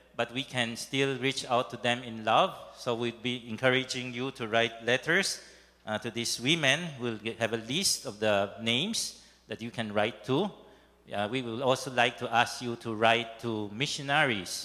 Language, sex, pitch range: English, male, 120-145 Hz